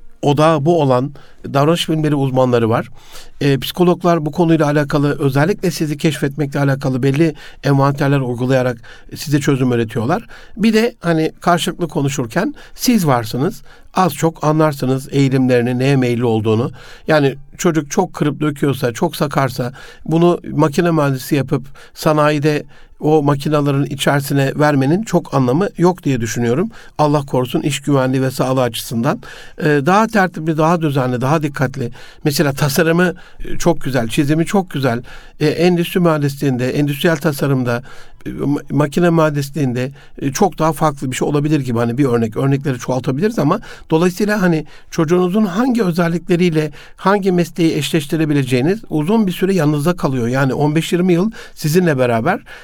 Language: Turkish